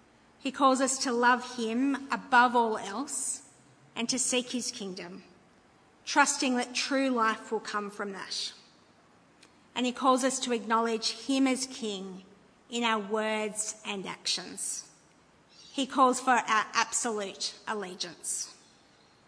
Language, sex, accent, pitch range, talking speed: English, female, Australian, 215-255 Hz, 130 wpm